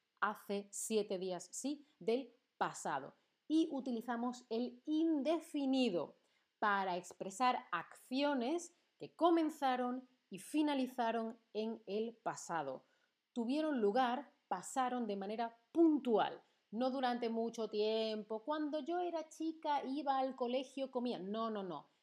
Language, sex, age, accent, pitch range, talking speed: Spanish, female, 30-49, Spanish, 215-285 Hz, 110 wpm